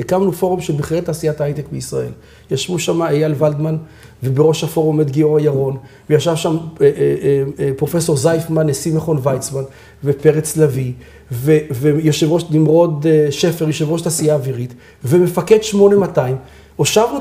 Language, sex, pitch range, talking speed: Hebrew, male, 145-195 Hz, 145 wpm